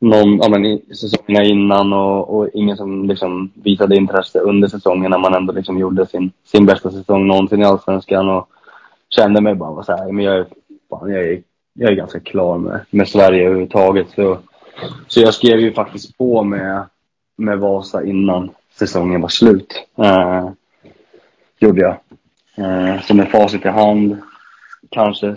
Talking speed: 165 wpm